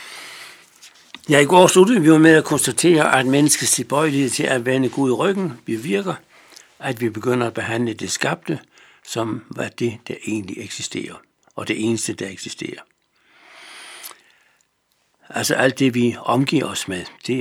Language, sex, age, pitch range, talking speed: Danish, male, 60-79, 115-165 Hz, 160 wpm